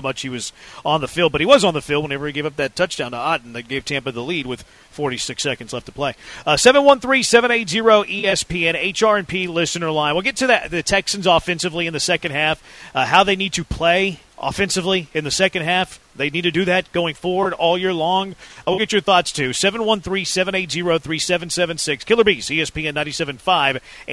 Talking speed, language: 195 wpm, English